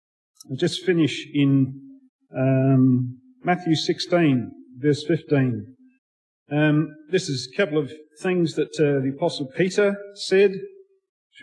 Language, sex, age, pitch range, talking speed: English, male, 50-69, 145-180 Hz, 120 wpm